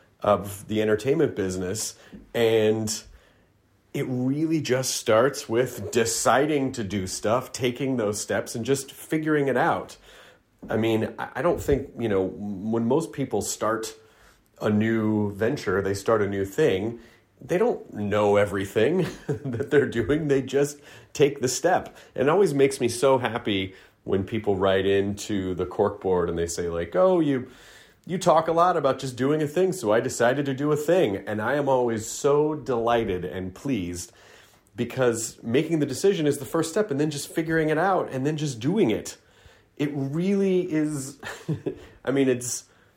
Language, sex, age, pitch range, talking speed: English, male, 30-49, 105-140 Hz, 170 wpm